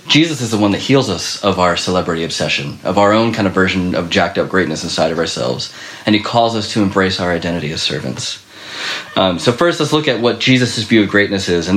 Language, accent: English, American